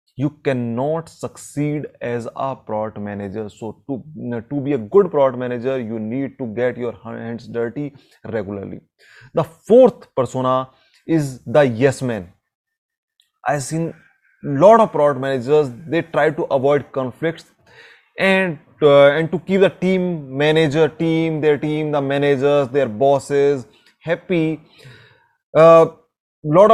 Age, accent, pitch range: 20-39, Indian, 130-180 Hz